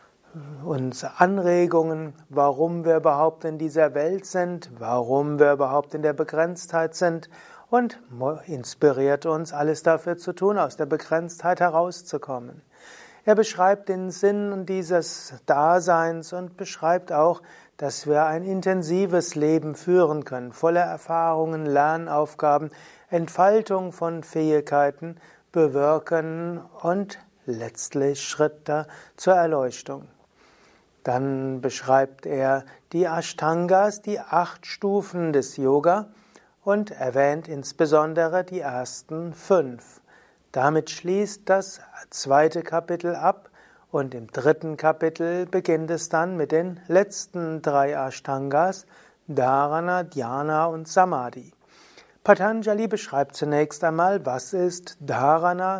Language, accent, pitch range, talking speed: German, German, 145-180 Hz, 110 wpm